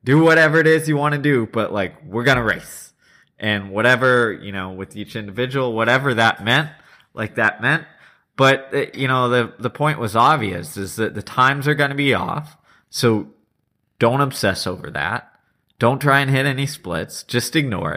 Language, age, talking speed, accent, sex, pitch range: English, 20-39, 195 wpm, American, male, 105-130 Hz